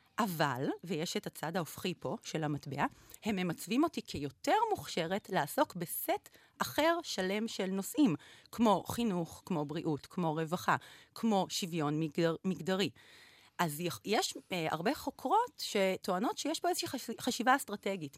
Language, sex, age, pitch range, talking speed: Hebrew, female, 30-49, 155-225 Hz, 130 wpm